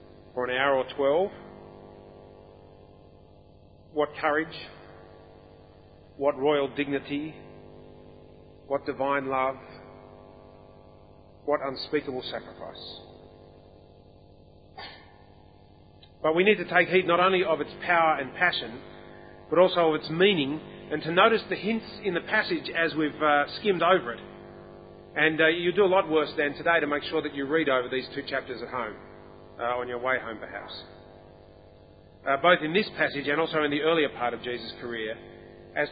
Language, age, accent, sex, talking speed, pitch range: English, 40-59, Australian, male, 150 wpm, 95-155 Hz